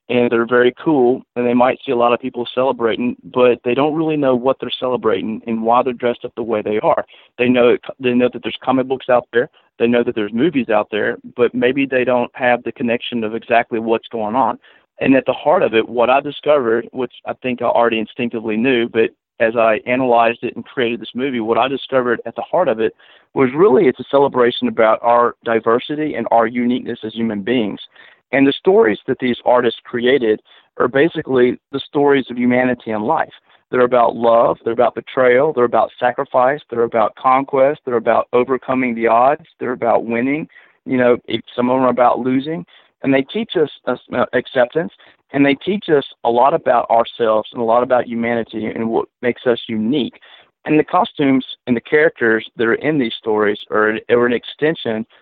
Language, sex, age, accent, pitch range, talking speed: English, male, 40-59, American, 115-130 Hz, 205 wpm